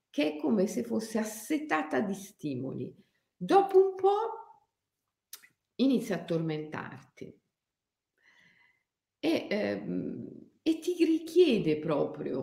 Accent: native